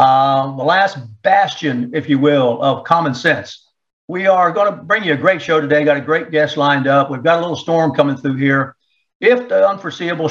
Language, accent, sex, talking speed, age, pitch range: English, American, male, 215 wpm, 60-79, 135-160 Hz